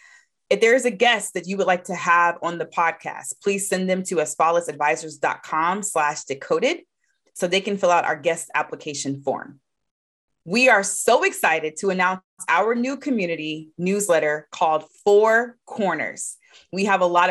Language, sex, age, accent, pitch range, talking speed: English, female, 30-49, American, 160-220 Hz, 165 wpm